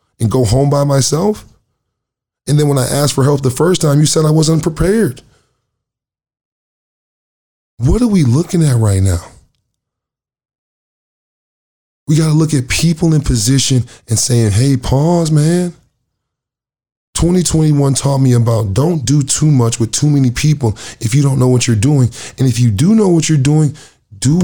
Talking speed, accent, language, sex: 165 wpm, American, English, male